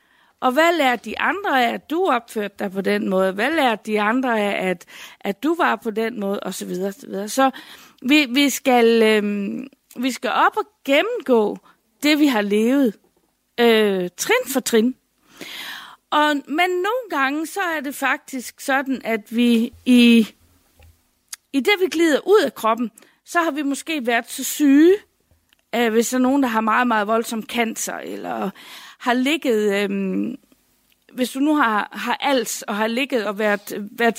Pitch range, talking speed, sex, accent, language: 215-285 Hz, 175 wpm, female, native, Danish